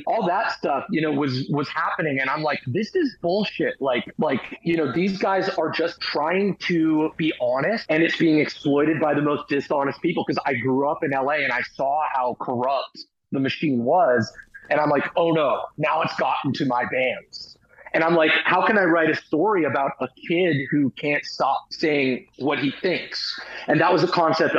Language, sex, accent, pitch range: English, male, American, 140-175 Hz